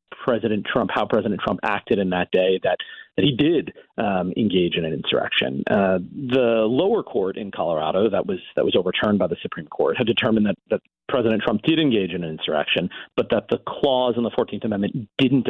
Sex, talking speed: male, 205 wpm